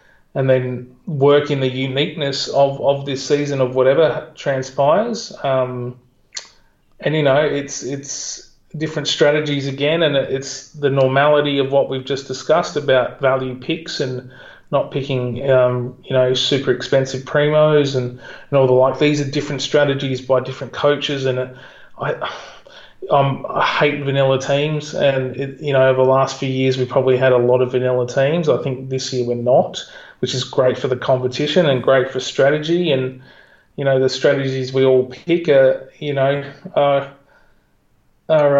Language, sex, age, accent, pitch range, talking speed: English, male, 30-49, Australian, 125-140 Hz, 165 wpm